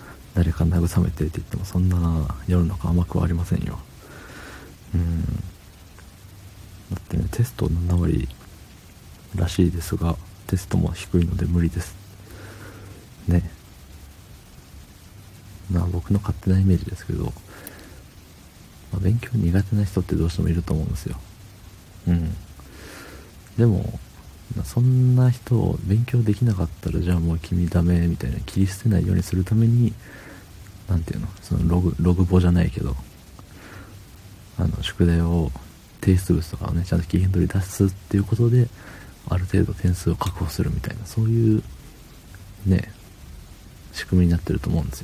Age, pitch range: 40-59, 85-100 Hz